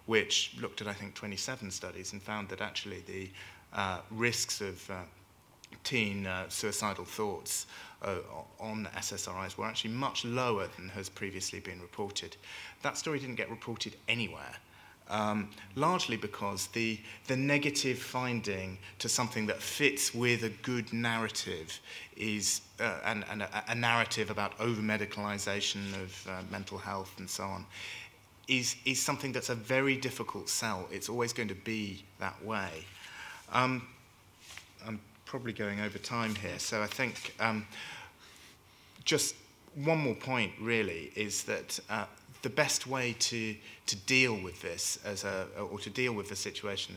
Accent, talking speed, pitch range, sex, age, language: British, 150 wpm, 100-120 Hz, male, 30-49, English